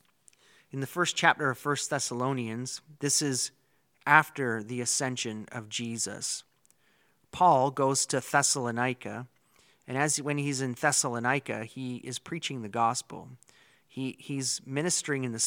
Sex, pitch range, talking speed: male, 115-145 Hz, 130 wpm